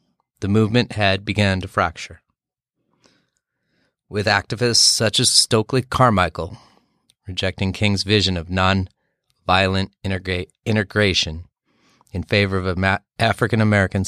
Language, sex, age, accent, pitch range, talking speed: English, male, 30-49, American, 85-105 Hz, 100 wpm